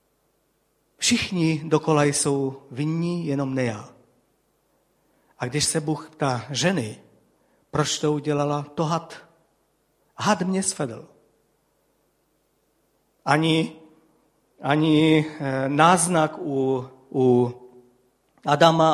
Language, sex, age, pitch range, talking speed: Czech, male, 50-69, 135-165 Hz, 80 wpm